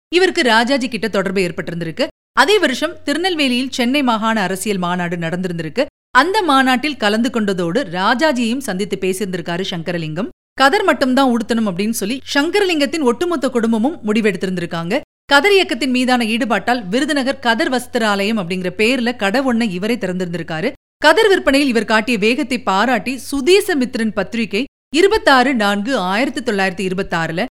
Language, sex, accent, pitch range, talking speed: Tamil, female, native, 195-280 Hz, 125 wpm